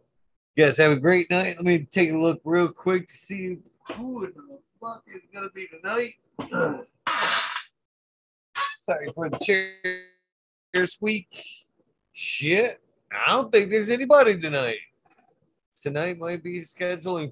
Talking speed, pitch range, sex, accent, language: 135 wpm, 125-190 Hz, male, American, English